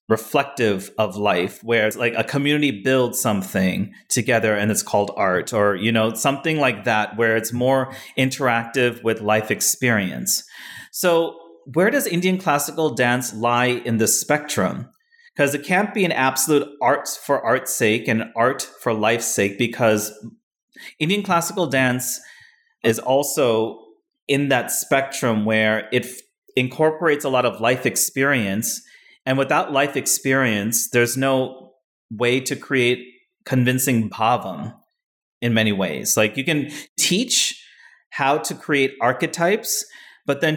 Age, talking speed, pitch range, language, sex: 30-49, 140 wpm, 115-145 Hz, English, male